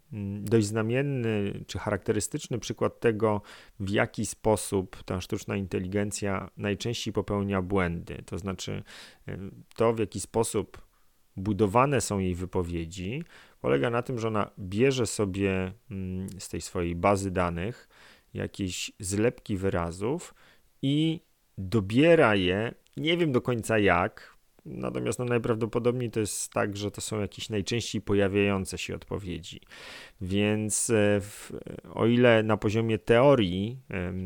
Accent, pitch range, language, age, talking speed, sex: native, 95-115 Hz, Polish, 40-59, 115 wpm, male